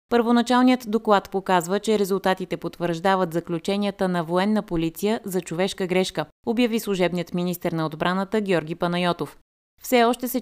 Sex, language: female, Bulgarian